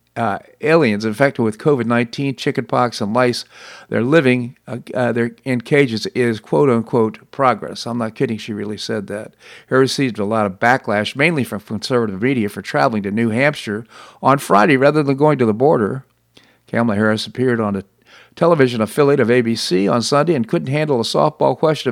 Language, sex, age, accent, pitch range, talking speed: English, male, 50-69, American, 110-140 Hz, 175 wpm